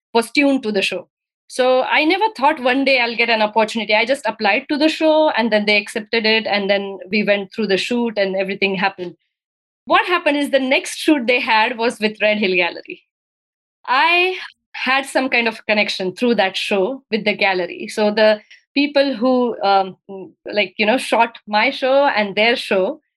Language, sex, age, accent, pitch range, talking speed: English, female, 20-39, Indian, 210-285 Hz, 195 wpm